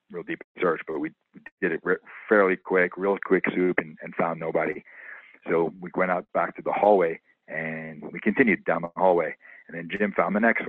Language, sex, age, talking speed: English, male, 40-59, 200 wpm